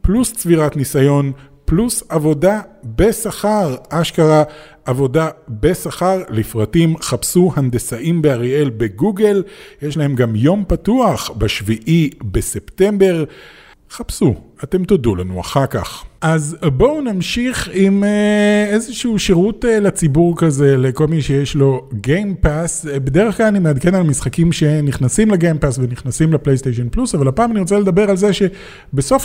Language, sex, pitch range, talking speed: Hebrew, male, 140-200 Hz, 125 wpm